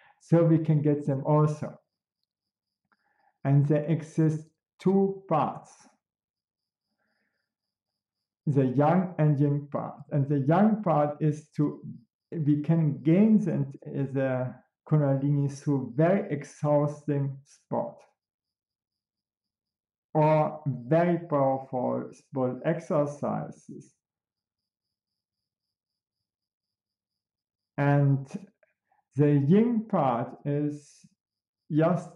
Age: 50-69